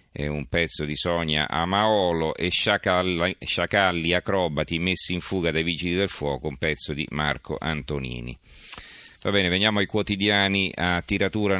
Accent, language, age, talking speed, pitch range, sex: native, Italian, 40-59, 150 wpm, 80-95 Hz, male